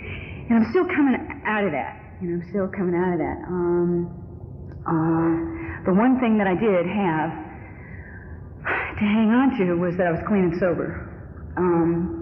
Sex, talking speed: female, 170 wpm